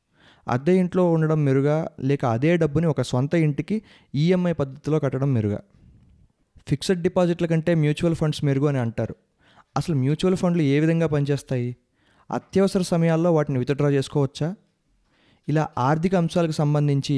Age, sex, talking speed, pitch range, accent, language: 20-39, male, 130 wpm, 130-155 Hz, native, Telugu